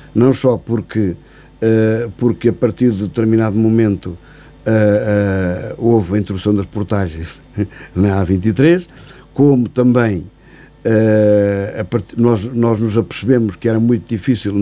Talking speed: 130 wpm